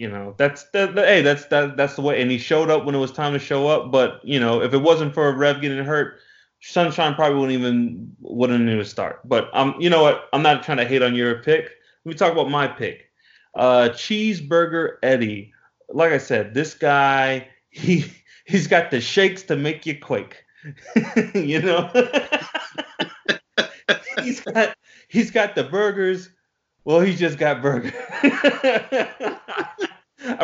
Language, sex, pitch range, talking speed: English, male, 125-170 Hz, 180 wpm